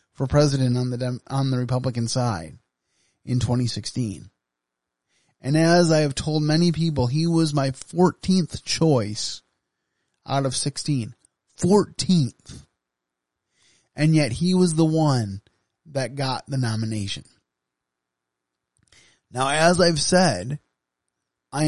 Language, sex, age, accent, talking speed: English, male, 30-49, American, 115 wpm